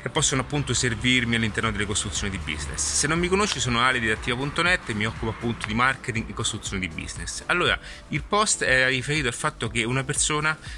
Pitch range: 110-130 Hz